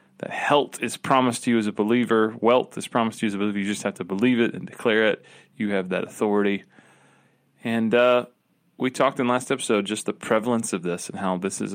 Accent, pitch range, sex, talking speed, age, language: American, 105-135 Hz, male, 235 wpm, 30-49, English